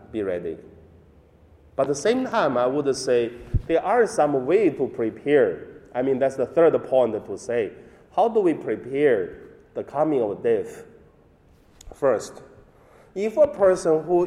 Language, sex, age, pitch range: Chinese, male, 30-49, 120-180 Hz